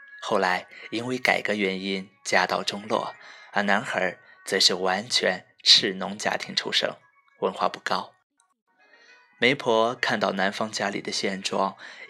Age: 20-39